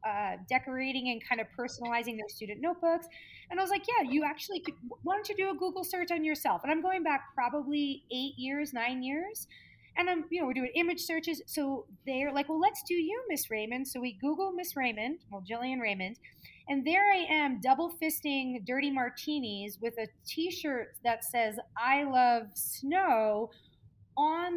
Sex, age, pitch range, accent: female, 30-49, 230-315 Hz, American